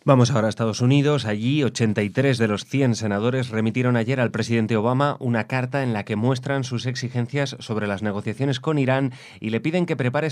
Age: 30-49